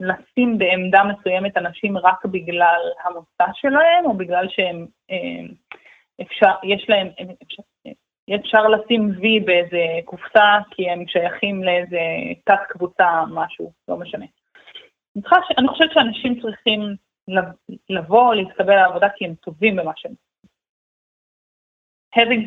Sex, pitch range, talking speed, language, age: female, 180-220 Hz, 105 wpm, Hebrew, 20-39